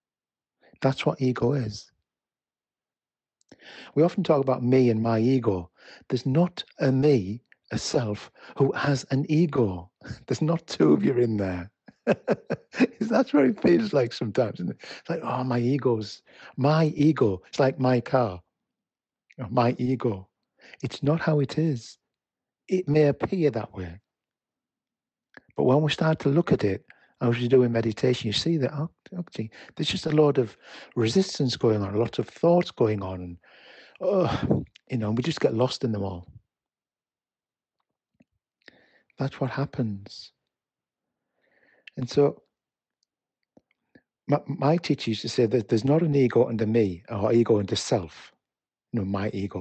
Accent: British